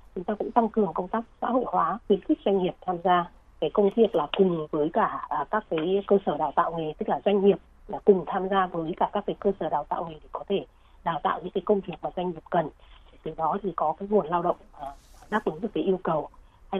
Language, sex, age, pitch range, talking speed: Vietnamese, female, 20-39, 170-210 Hz, 270 wpm